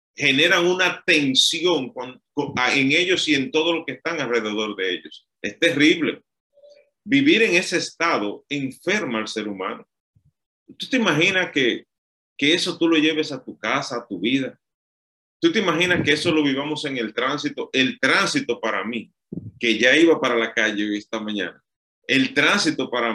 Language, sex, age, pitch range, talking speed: Spanish, male, 30-49, 115-160 Hz, 170 wpm